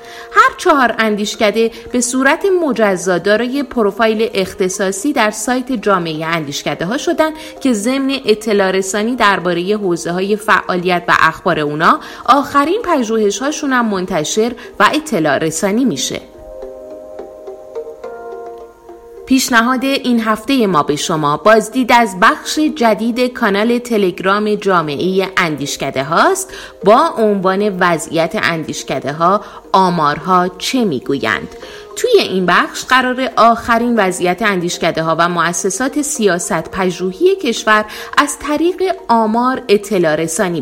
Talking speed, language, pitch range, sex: 105 wpm, Persian, 185-260 Hz, female